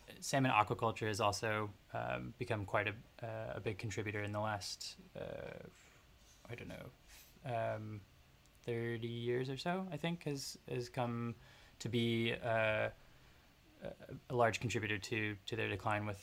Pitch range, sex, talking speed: 105-120 Hz, male, 150 wpm